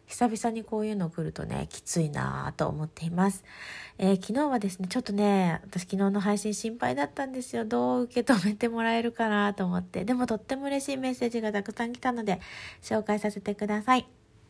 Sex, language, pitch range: female, Japanese, 205-265 Hz